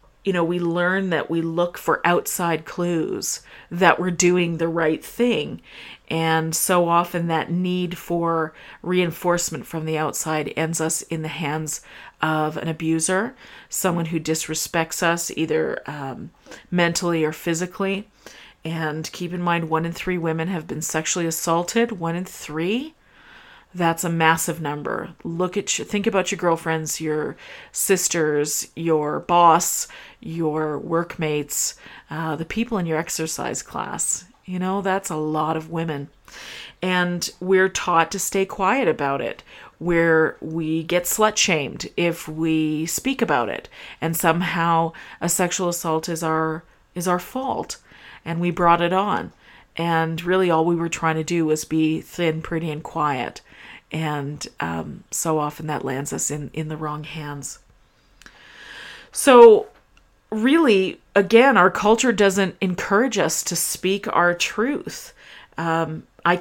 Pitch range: 160-185 Hz